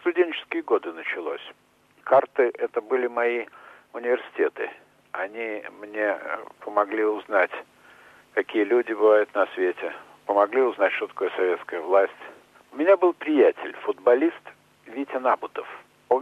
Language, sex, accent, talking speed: Russian, male, native, 115 wpm